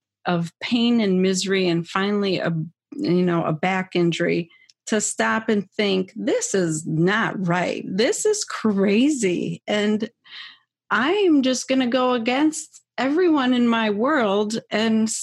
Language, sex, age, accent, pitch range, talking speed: English, female, 30-49, American, 180-250 Hz, 140 wpm